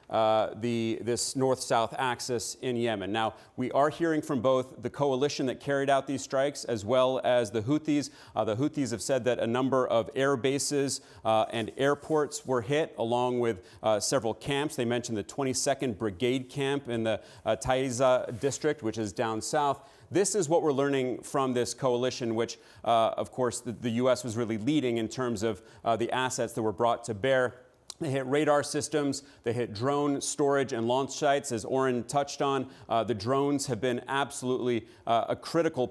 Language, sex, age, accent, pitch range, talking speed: English, male, 30-49, American, 120-140 Hz, 190 wpm